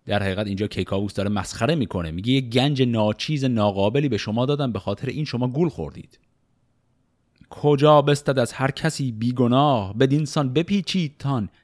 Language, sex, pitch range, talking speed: Persian, male, 105-145 Hz, 165 wpm